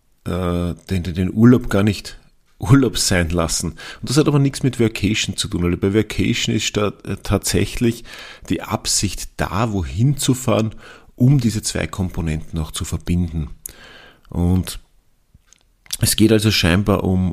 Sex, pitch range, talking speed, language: male, 95-115 Hz, 150 wpm, German